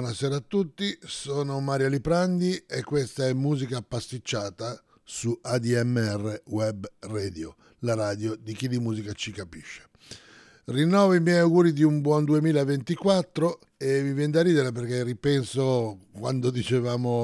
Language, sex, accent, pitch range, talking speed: English, male, Italian, 115-140 Hz, 140 wpm